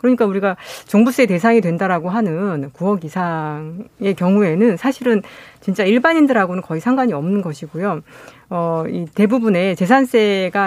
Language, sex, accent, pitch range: Korean, female, native, 180-240 Hz